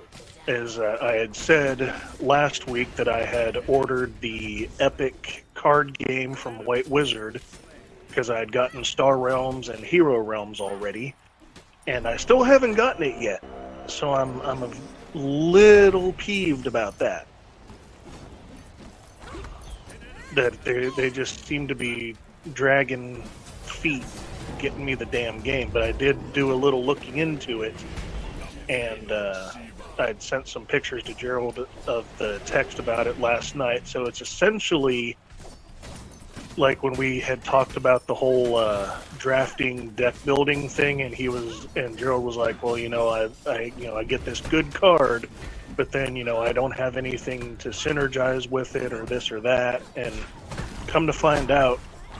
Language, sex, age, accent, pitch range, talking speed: English, male, 30-49, American, 115-140 Hz, 160 wpm